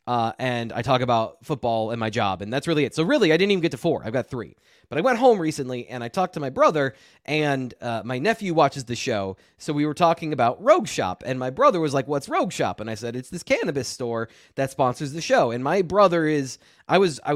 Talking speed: 260 wpm